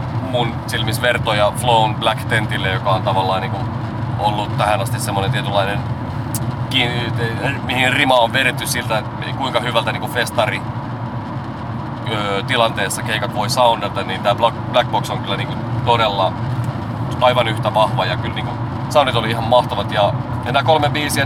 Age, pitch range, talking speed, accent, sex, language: 30-49, 115-125 Hz, 150 wpm, native, male, Finnish